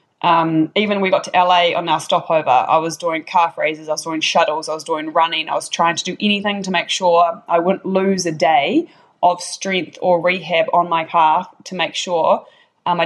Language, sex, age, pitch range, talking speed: English, female, 20-39, 165-190 Hz, 220 wpm